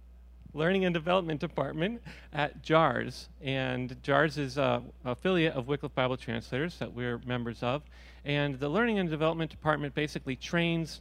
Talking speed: 155 wpm